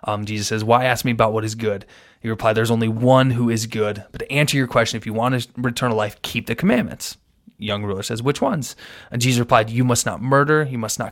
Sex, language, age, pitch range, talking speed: male, English, 20-39, 110-120 Hz, 260 wpm